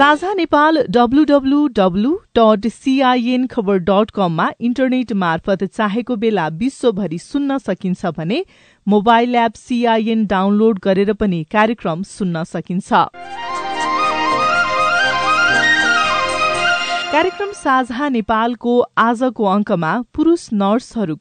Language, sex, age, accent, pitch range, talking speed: English, female, 30-49, Indian, 185-250 Hz, 90 wpm